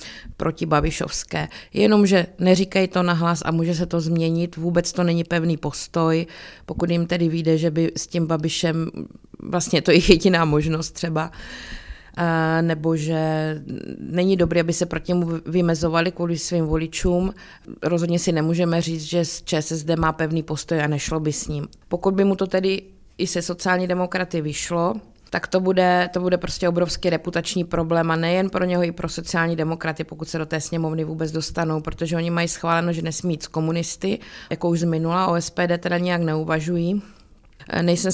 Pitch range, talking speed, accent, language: 160-180 Hz, 170 wpm, native, Czech